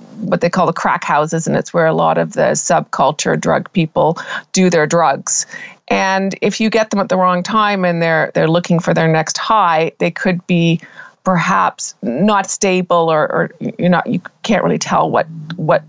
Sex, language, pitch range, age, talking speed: female, English, 160-200 Hz, 40-59, 195 wpm